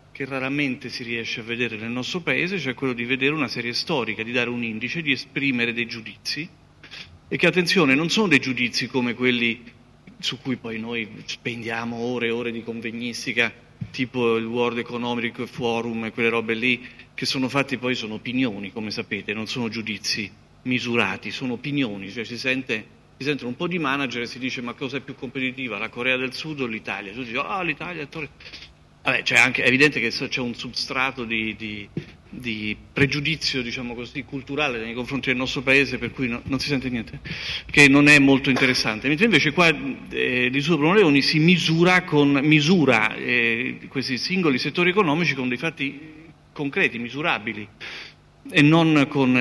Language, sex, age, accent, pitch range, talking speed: Italian, male, 40-59, native, 120-145 Hz, 185 wpm